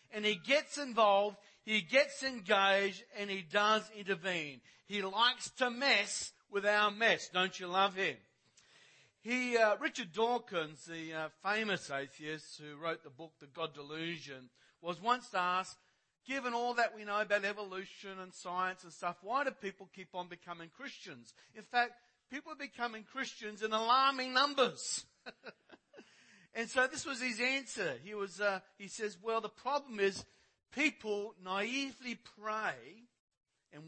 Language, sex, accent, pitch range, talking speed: English, male, Australian, 175-240 Hz, 150 wpm